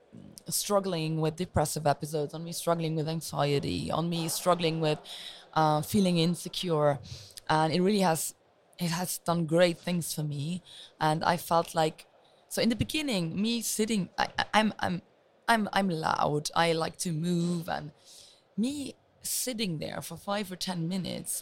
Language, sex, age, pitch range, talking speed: English, female, 20-39, 165-215 Hz, 155 wpm